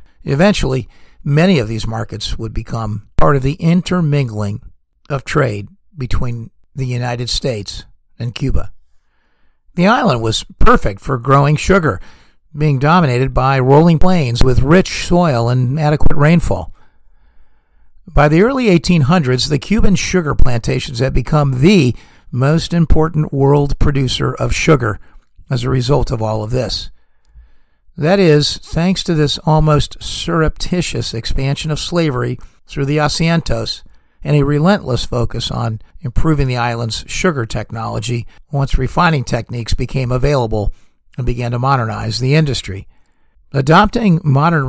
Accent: American